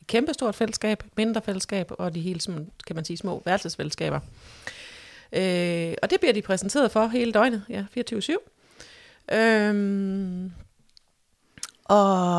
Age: 30-49